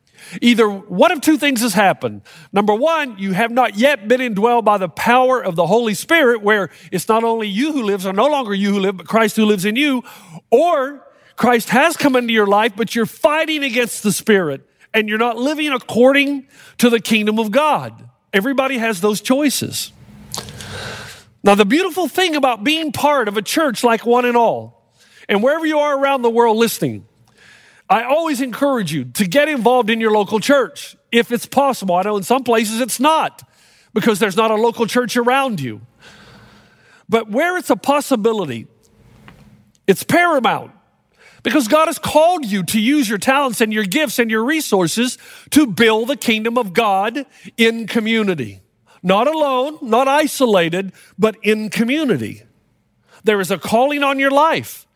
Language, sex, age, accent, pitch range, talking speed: English, male, 50-69, American, 210-275 Hz, 180 wpm